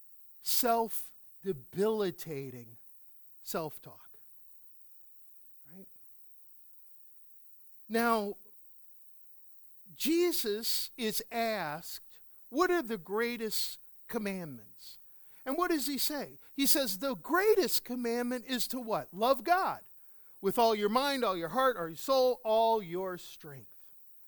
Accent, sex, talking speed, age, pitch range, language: American, male, 100 wpm, 50-69, 195-265 Hz, English